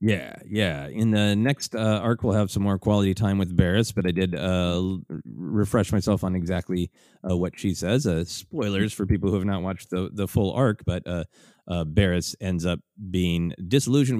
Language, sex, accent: English, male, American